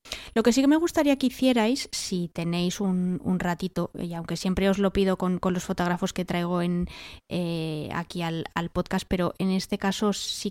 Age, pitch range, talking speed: 20-39, 180-225 Hz, 200 wpm